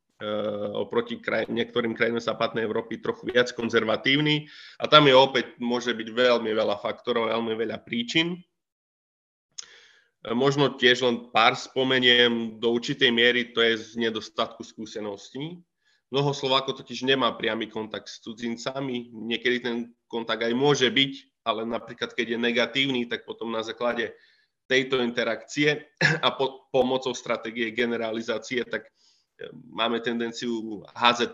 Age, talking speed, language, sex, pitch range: 30-49, 125 wpm, Slovak, male, 115-135 Hz